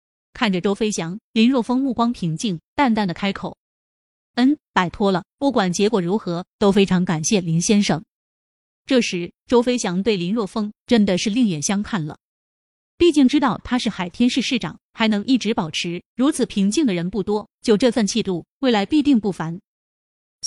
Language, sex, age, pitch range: Chinese, female, 20-39, 185-250 Hz